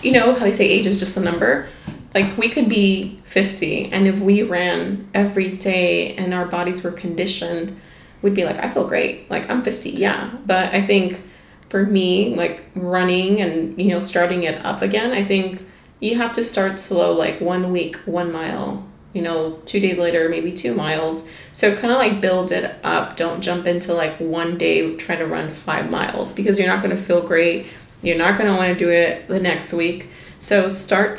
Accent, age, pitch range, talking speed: American, 30-49, 170-195 Hz, 210 wpm